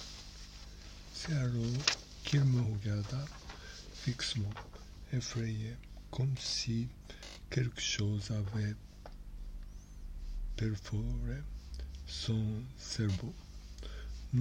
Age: 60-79